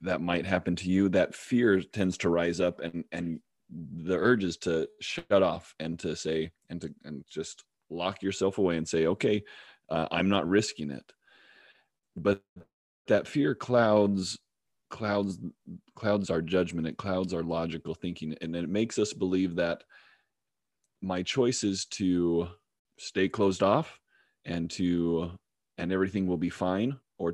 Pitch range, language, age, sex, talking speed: 80-95 Hz, English, 30-49, male, 155 wpm